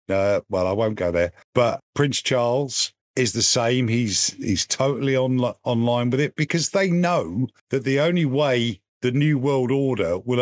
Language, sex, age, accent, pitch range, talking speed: English, male, 50-69, British, 105-135 Hz, 180 wpm